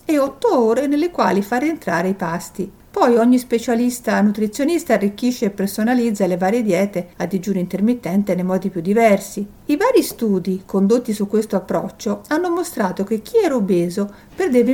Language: Italian